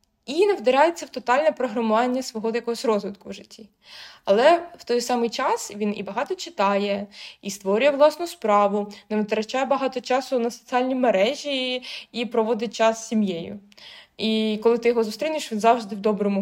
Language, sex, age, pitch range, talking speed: Ukrainian, female, 20-39, 205-255 Hz, 165 wpm